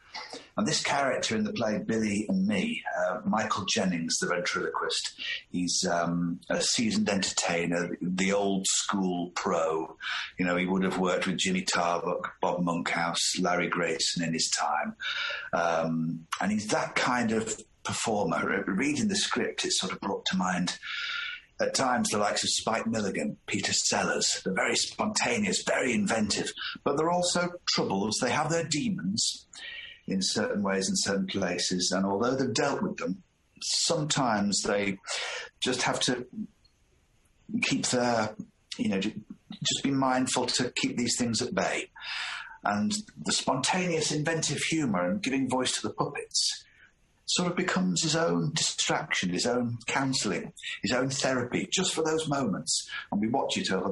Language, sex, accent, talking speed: English, male, British, 155 wpm